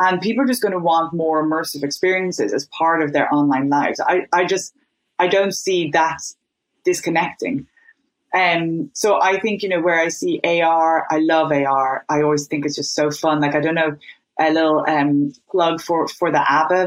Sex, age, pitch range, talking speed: female, 30-49, 155-190 Hz, 200 wpm